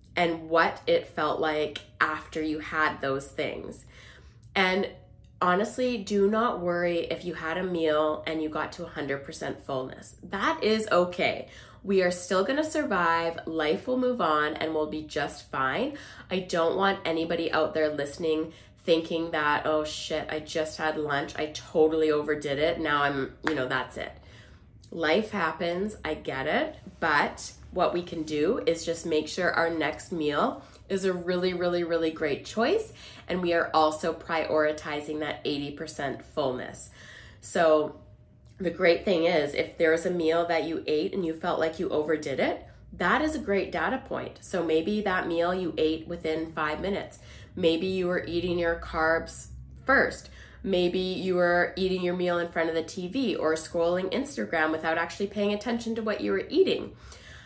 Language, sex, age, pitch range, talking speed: English, female, 20-39, 155-180 Hz, 175 wpm